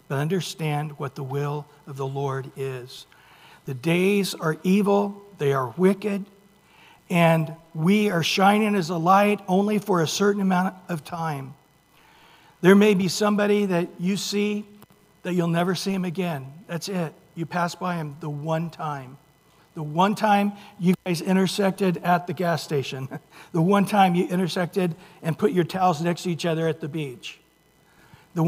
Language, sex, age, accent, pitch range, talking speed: English, male, 60-79, American, 150-190 Hz, 165 wpm